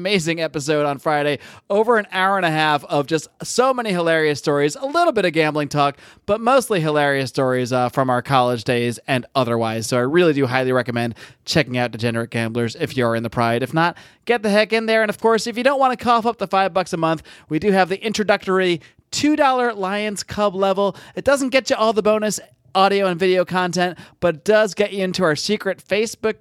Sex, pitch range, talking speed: male, 145-200 Hz, 225 wpm